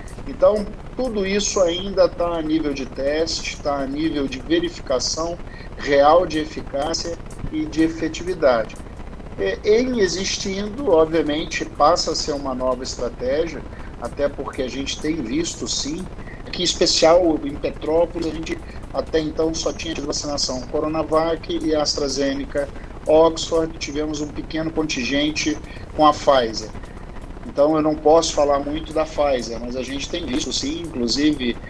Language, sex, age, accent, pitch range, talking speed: Portuguese, male, 50-69, Brazilian, 140-170 Hz, 140 wpm